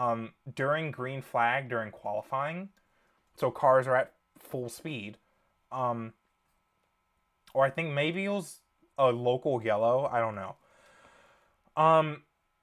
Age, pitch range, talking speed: 20-39, 110-150 Hz, 125 wpm